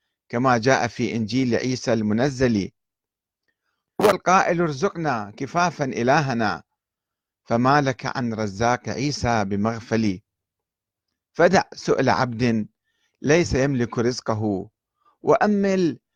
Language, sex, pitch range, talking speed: Arabic, male, 115-170 Hz, 85 wpm